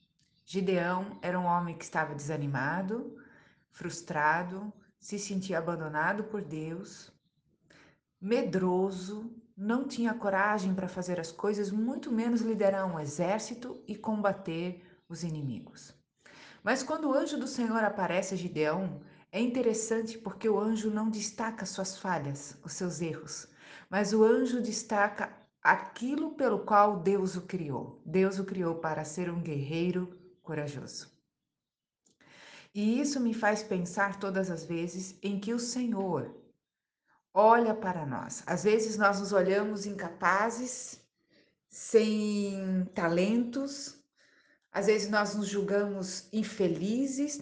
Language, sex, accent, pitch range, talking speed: Portuguese, female, Brazilian, 175-220 Hz, 125 wpm